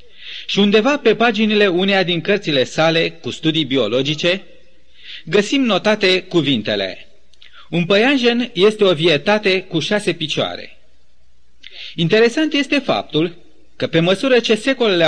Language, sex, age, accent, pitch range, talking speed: Romanian, male, 30-49, native, 160-215 Hz, 120 wpm